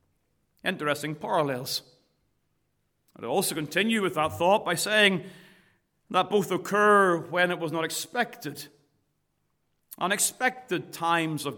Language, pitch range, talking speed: English, 150-230 Hz, 110 wpm